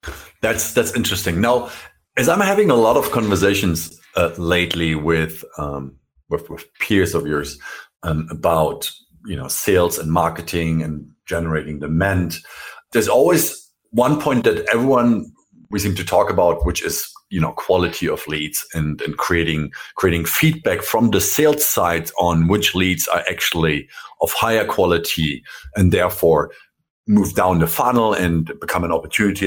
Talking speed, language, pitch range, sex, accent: 155 wpm, English, 85-125 Hz, male, German